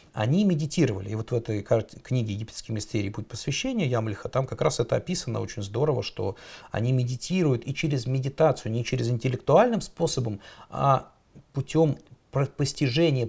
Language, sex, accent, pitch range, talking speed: Russian, male, native, 110-150 Hz, 150 wpm